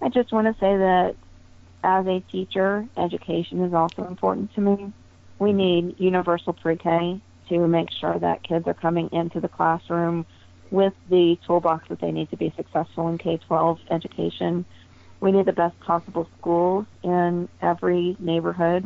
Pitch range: 150-180 Hz